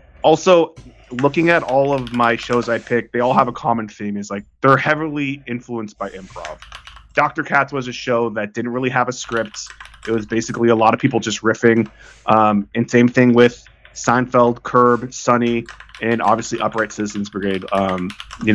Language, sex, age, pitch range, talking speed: English, male, 20-39, 105-125 Hz, 185 wpm